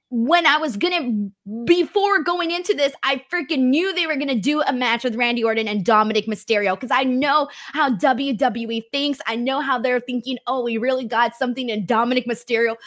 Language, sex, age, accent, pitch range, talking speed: English, female, 20-39, American, 240-320 Hz, 205 wpm